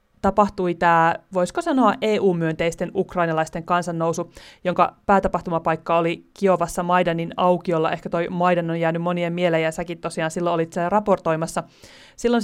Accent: native